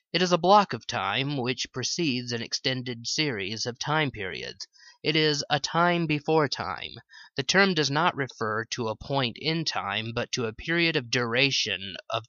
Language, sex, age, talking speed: English, male, 30-49, 180 wpm